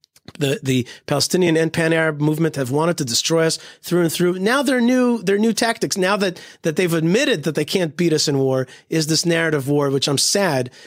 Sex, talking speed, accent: male, 215 wpm, American